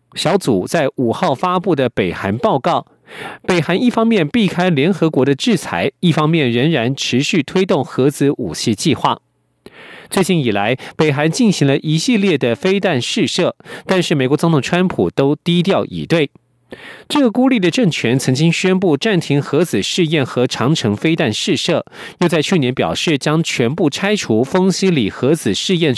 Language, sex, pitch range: German, male, 135-180 Hz